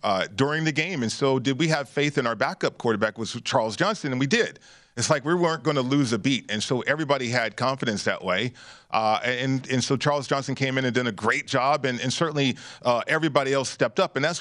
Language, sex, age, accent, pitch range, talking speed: English, male, 40-59, American, 125-160 Hz, 245 wpm